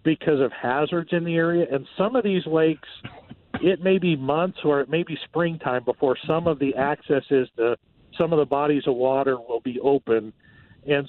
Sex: male